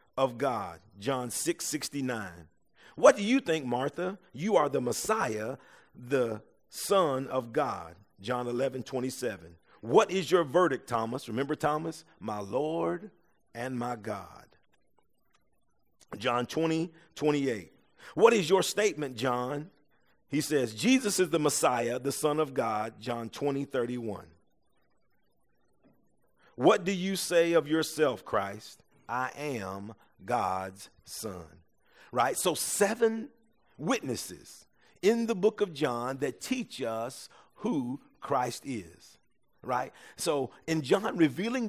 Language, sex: English, male